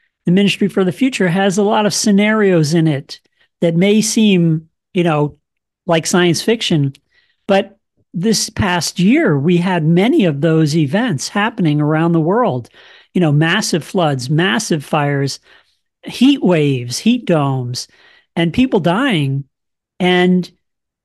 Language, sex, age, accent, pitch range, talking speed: English, male, 40-59, American, 155-200 Hz, 135 wpm